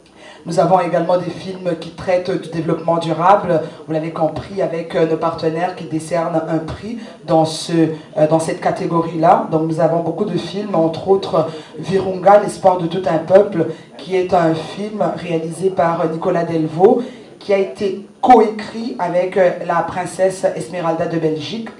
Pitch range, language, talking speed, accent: 160-190 Hz, English, 155 wpm, French